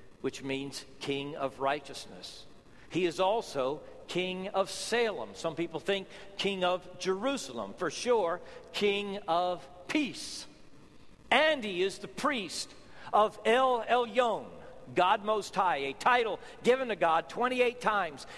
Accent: American